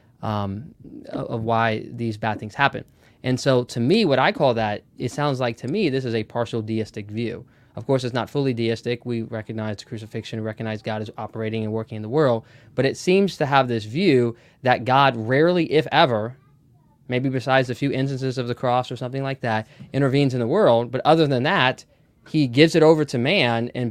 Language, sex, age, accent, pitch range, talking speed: English, male, 20-39, American, 115-140 Hz, 210 wpm